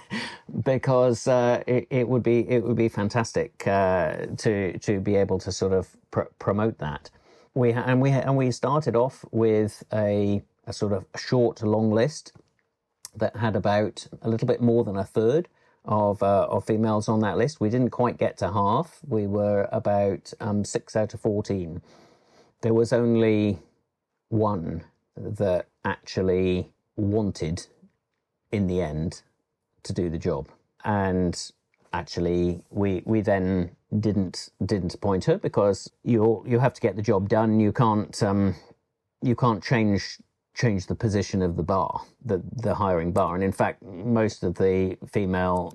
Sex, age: male, 40-59